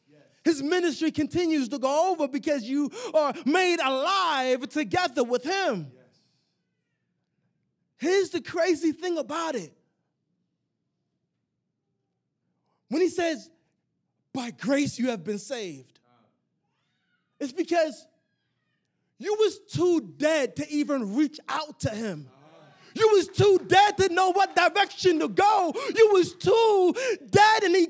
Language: English